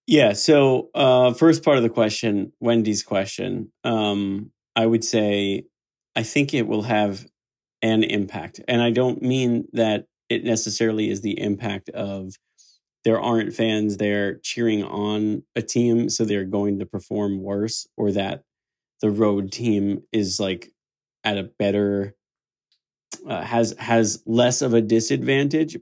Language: English